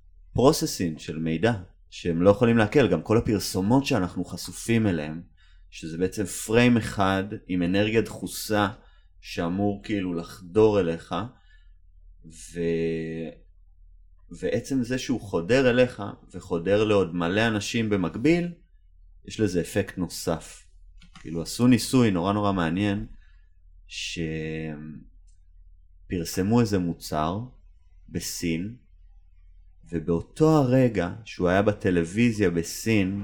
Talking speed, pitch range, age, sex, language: 100 wpm, 80-115 Hz, 30-49, male, Hebrew